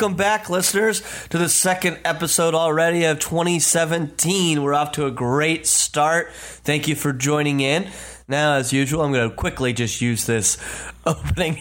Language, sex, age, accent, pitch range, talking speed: English, male, 30-49, American, 125-155 Hz, 165 wpm